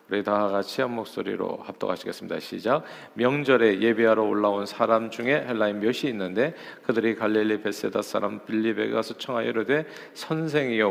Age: 40-59